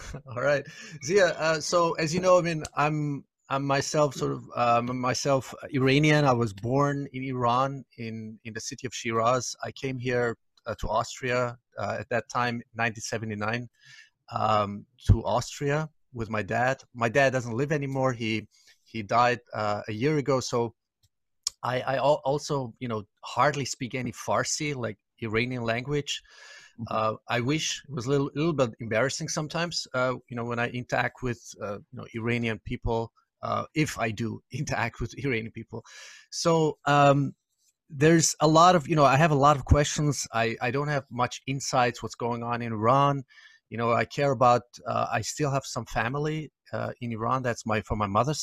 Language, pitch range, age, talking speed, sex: English, 115-145 Hz, 30-49, 180 wpm, male